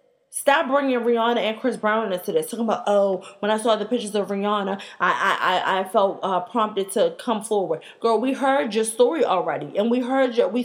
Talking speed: 215 wpm